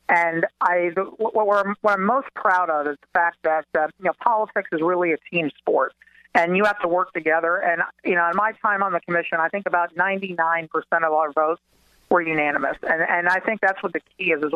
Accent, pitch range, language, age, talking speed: American, 160-185 Hz, English, 50-69, 240 wpm